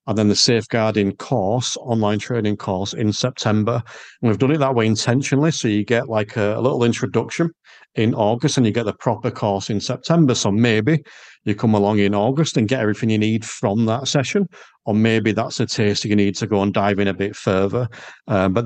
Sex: male